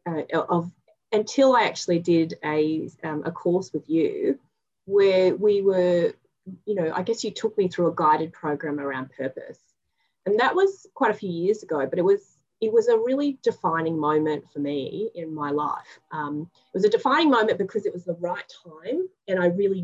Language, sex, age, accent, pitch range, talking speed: English, female, 30-49, Australian, 165-255 Hz, 195 wpm